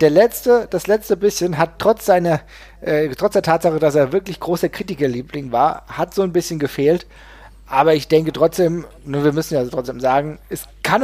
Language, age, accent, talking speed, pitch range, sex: German, 40-59, German, 190 wpm, 150-195 Hz, male